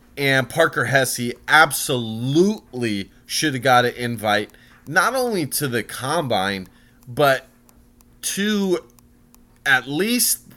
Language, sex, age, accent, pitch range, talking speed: English, male, 30-49, American, 120-160 Hz, 100 wpm